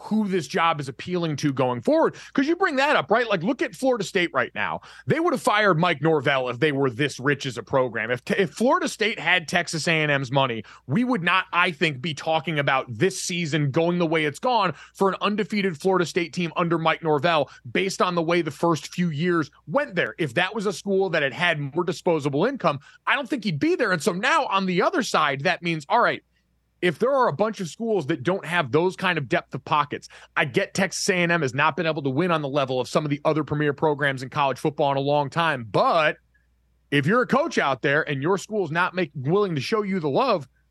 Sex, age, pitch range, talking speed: male, 30-49, 150-195 Hz, 245 wpm